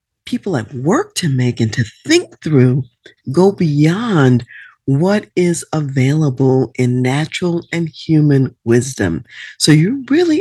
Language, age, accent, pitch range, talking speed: English, 50-69, American, 125-185 Hz, 125 wpm